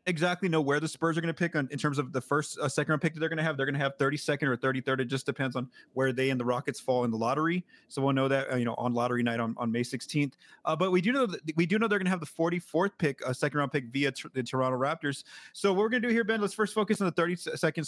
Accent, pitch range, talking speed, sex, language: American, 130-165 Hz, 320 wpm, male, English